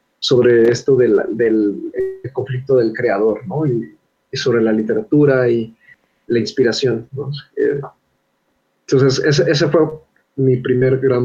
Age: 30-49